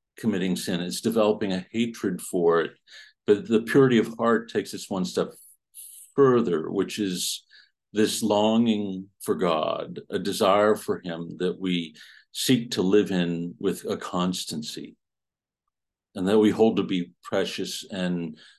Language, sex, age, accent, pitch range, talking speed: English, male, 50-69, American, 90-110 Hz, 145 wpm